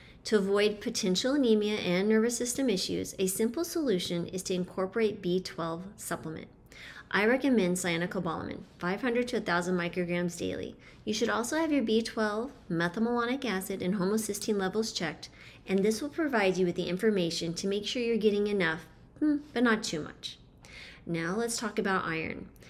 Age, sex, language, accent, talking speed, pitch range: 30-49, female, English, American, 155 wpm, 180-225 Hz